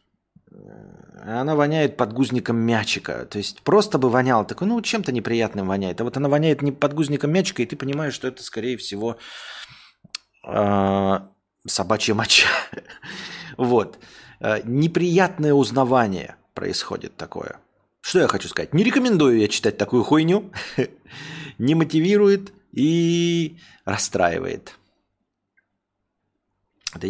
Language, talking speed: Russian, 105 wpm